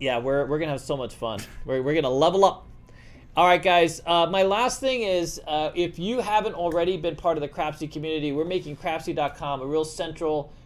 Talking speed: 225 wpm